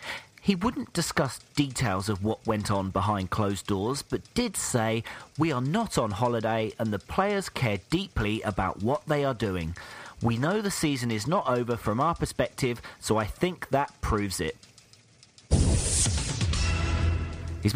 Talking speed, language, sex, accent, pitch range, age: 155 wpm, English, male, British, 110-150 Hz, 40-59